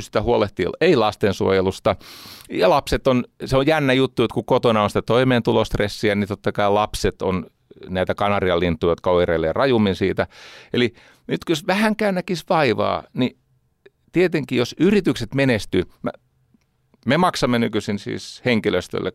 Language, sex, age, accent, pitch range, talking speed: Finnish, male, 40-59, native, 95-140 Hz, 140 wpm